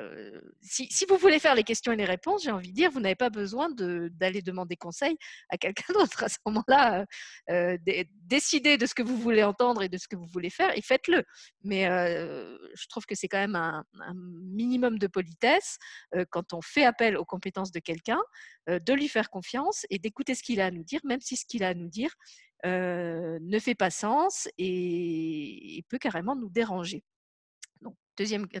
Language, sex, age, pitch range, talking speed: French, female, 40-59, 185-260 Hz, 205 wpm